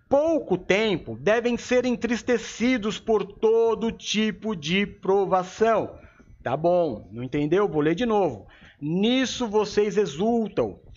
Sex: male